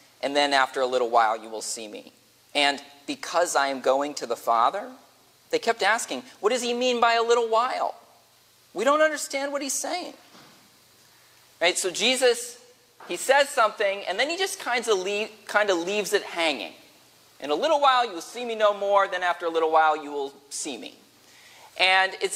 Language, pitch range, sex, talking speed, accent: English, 165-230 Hz, male, 200 wpm, American